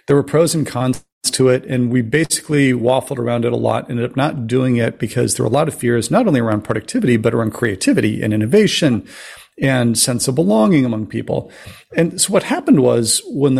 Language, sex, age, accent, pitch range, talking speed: English, male, 40-59, American, 115-140 Hz, 210 wpm